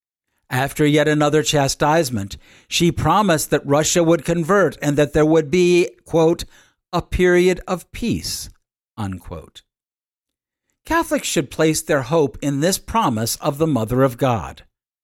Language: English